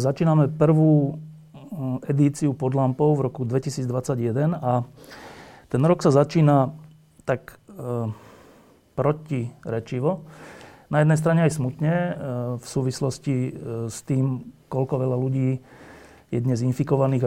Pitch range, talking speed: 125-150 Hz, 120 wpm